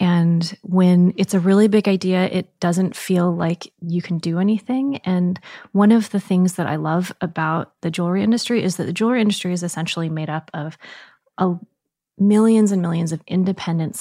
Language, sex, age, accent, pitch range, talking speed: English, female, 30-49, American, 165-195 Hz, 180 wpm